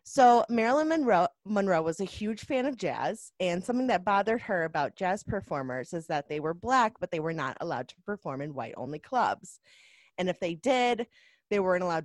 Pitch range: 155-210 Hz